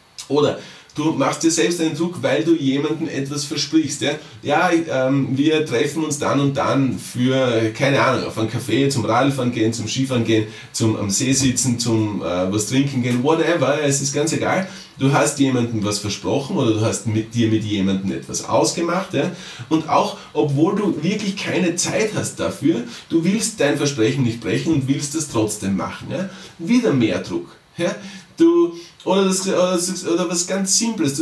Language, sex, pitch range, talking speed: German, male, 125-180 Hz, 180 wpm